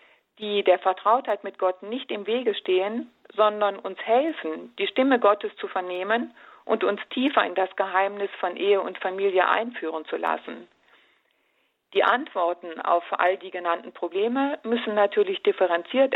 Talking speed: 150 wpm